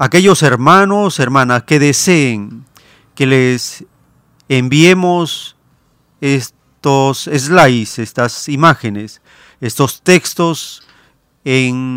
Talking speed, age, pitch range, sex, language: 75 wpm, 40-59, 130-165 Hz, male, Spanish